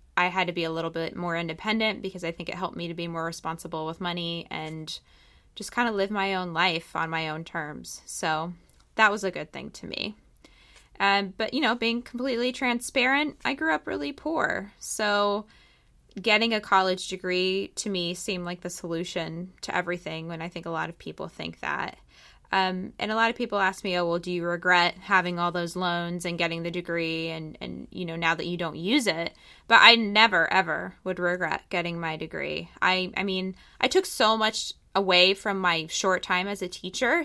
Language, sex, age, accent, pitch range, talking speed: English, female, 20-39, American, 170-210 Hz, 210 wpm